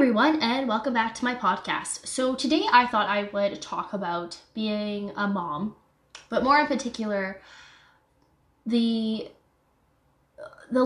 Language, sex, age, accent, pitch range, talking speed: English, female, 10-29, American, 185-230 Hz, 135 wpm